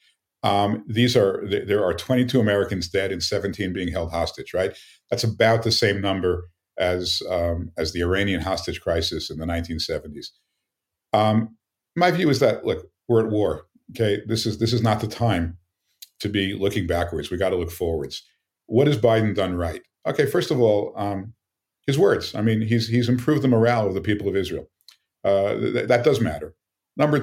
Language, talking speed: English, 185 wpm